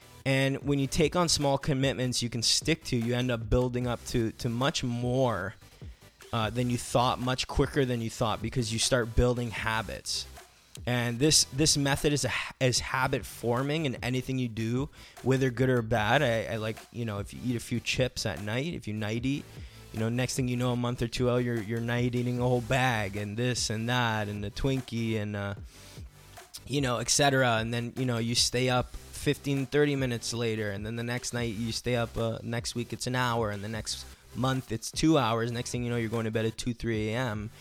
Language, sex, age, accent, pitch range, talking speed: English, male, 20-39, American, 110-125 Hz, 225 wpm